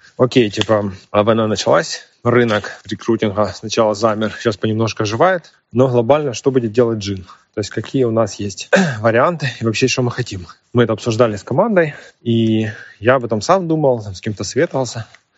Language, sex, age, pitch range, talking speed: Ukrainian, male, 20-39, 105-125 Hz, 170 wpm